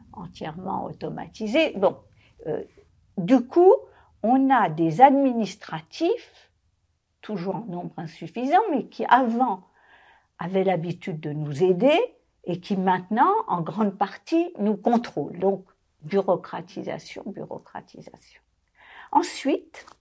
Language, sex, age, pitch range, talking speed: French, female, 50-69, 185-310 Hz, 100 wpm